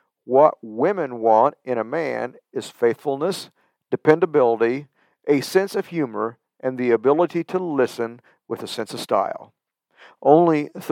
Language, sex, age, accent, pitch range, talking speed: English, male, 50-69, American, 115-150 Hz, 130 wpm